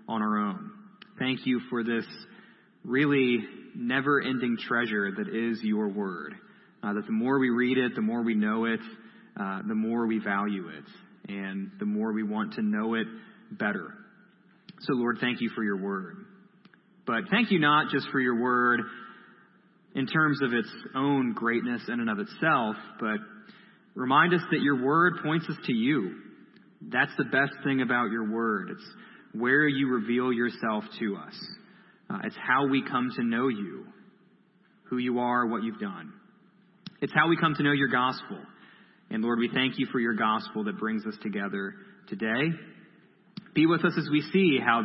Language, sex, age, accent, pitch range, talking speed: English, male, 30-49, American, 115-190 Hz, 175 wpm